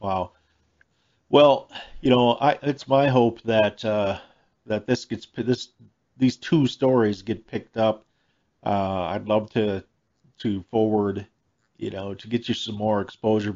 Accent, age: American, 50-69